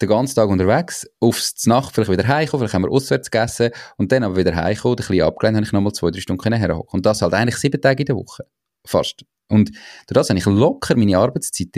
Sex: male